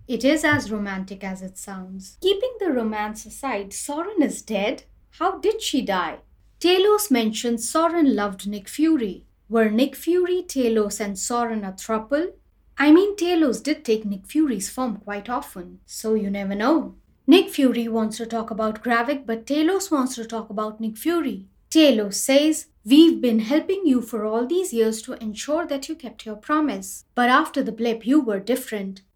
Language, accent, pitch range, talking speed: English, Indian, 210-295 Hz, 175 wpm